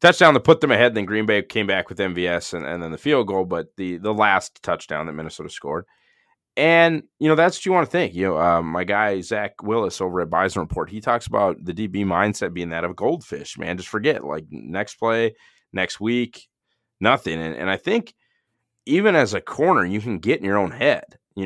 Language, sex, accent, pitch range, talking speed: English, male, American, 95-125 Hz, 230 wpm